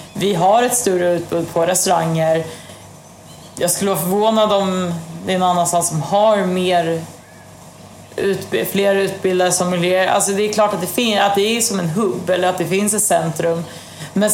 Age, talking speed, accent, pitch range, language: 30-49, 180 wpm, native, 175-210 Hz, Swedish